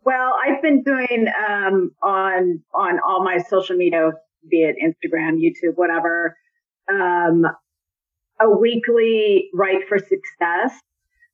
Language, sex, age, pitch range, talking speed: English, female, 30-49, 175-235 Hz, 115 wpm